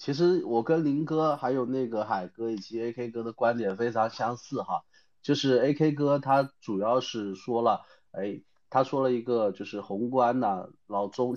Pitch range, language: 105-130 Hz, Chinese